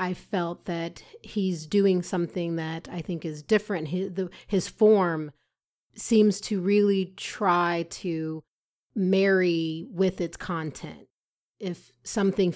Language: English